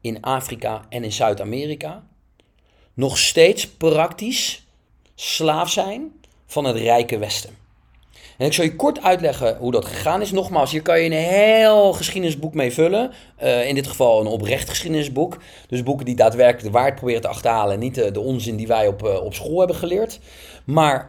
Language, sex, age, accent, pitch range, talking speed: English, male, 40-59, Dutch, 120-155 Hz, 180 wpm